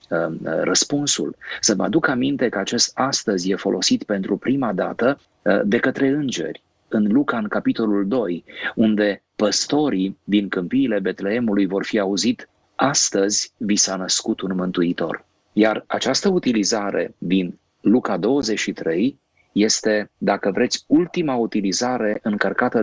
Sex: male